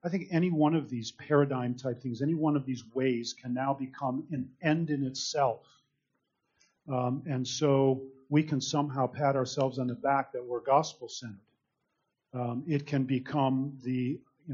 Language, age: English, 40-59